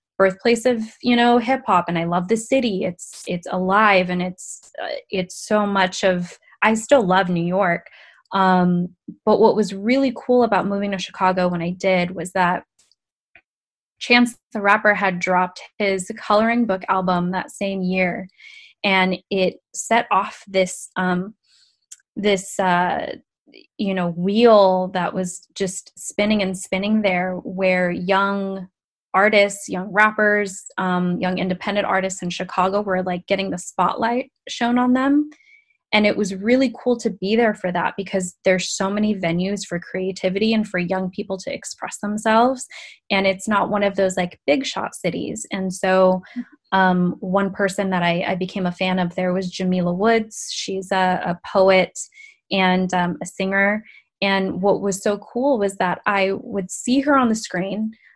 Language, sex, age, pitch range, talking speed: English, female, 20-39, 185-215 Hz, 165 wpm